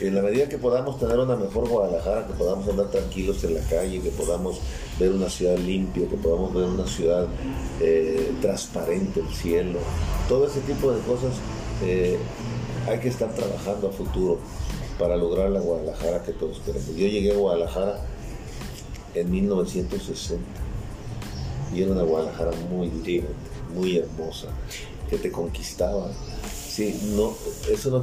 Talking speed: 150 wpm